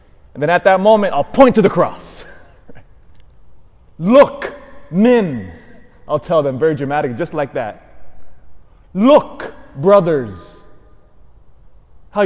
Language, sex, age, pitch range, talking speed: English, male, 20-39, 140-195 Hz, 115 wpm